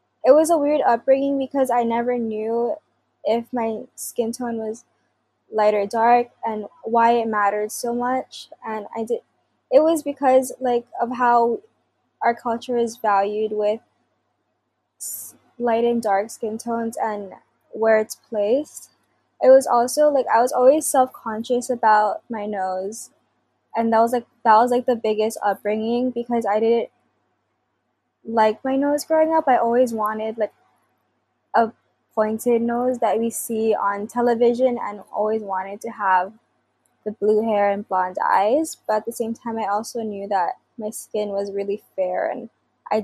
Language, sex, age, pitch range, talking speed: English, female, 10-29, 210-240 Hz, 160 wpm